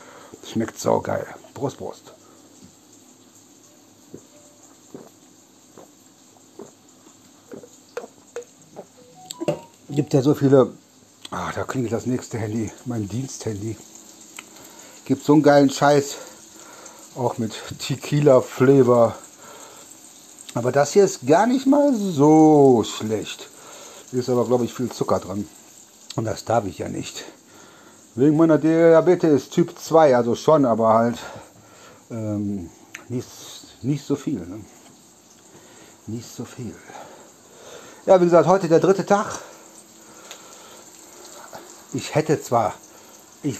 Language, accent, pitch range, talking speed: German, German, 120-170 Hz, 105 wpm